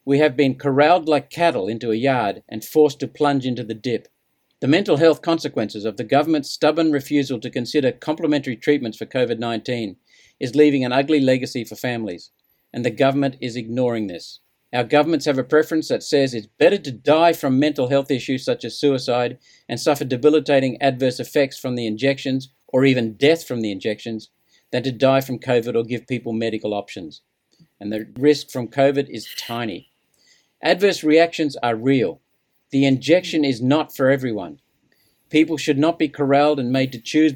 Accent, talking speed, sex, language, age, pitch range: Australian, 180 wpm, male, English, 50-69, 125-150 Hz